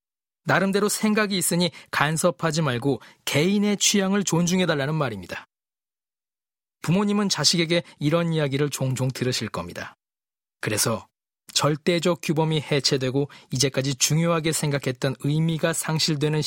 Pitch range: 135-175 Hz